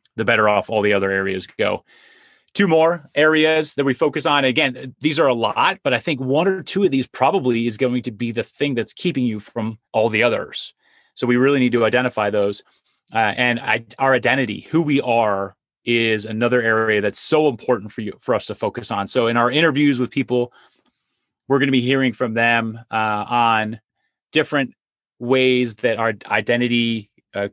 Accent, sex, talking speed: American, male, 195 wpm